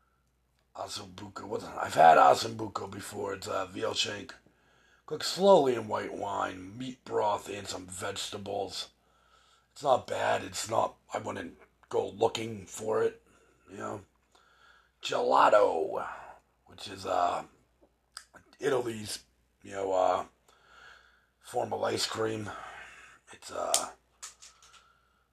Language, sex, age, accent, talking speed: English, male, 40-59, American, 105 wpm